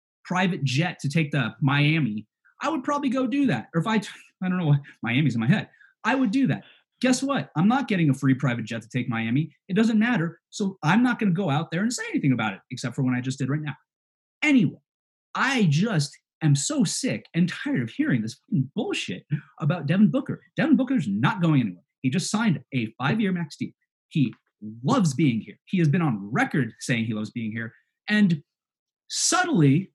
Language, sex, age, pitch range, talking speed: English, male, 30-49, 130-210 Hz, 210 wpm